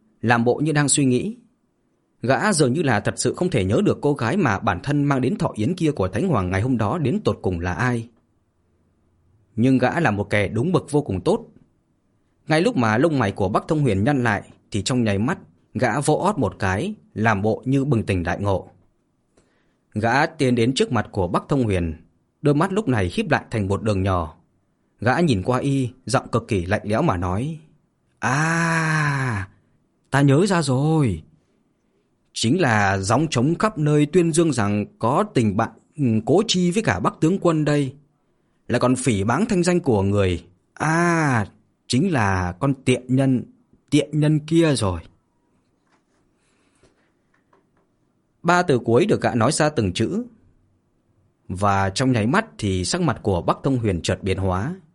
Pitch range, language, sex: 100-150 Hz, Vietnamese, male